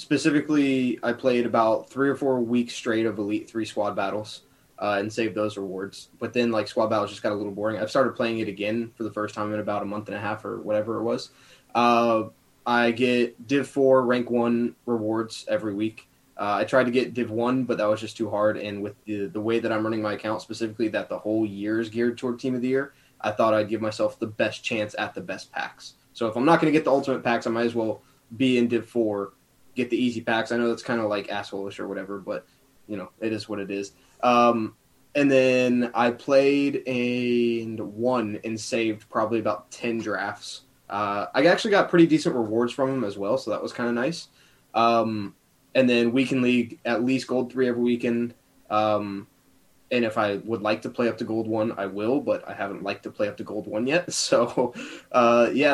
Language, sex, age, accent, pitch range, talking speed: English, male, 20-39, American, 105-125 Hz, 230 wpm